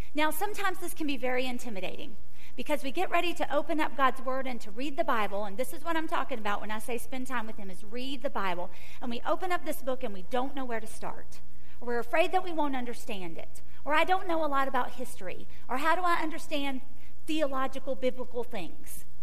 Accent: American